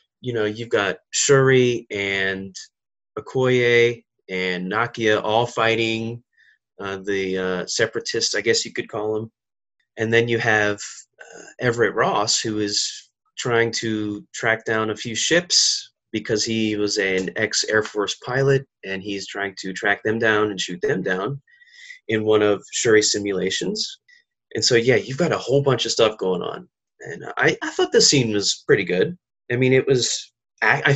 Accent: American